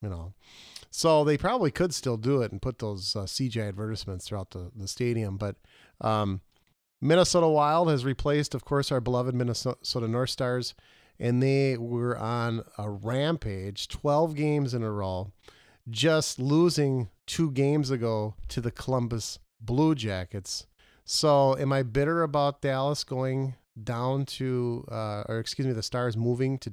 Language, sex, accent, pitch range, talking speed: English, male, American, 105-140 Hz, 155 wpm